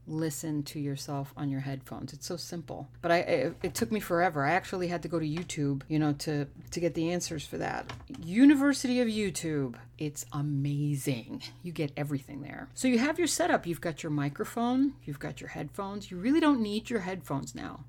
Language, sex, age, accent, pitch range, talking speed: English, female, 40-59, American, 145-185 Hz, 205 wpm